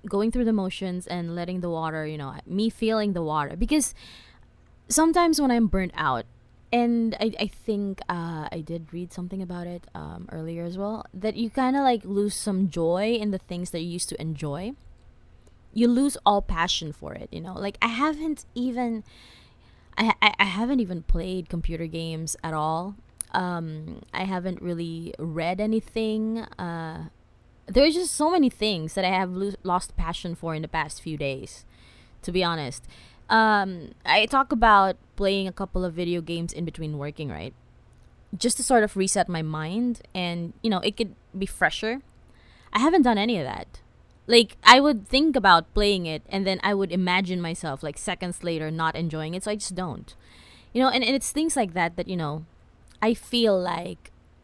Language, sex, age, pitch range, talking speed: English, female, 20-39, 165-220 Hz, 185 wpm